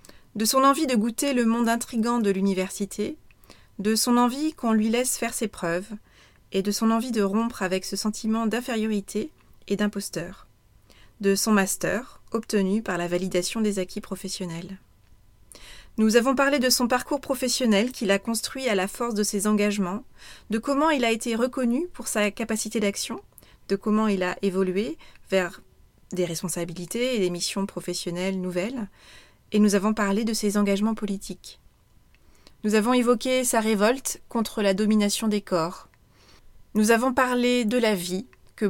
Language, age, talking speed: French, 30-49, 165 wpm